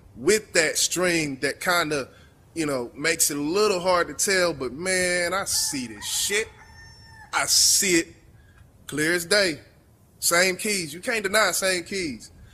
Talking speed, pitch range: 165 wpm, 155-195 Hz